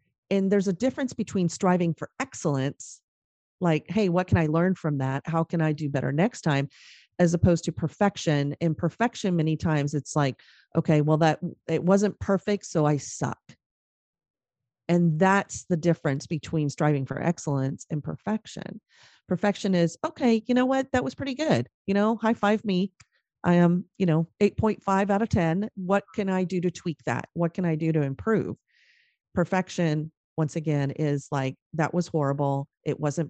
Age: 40-59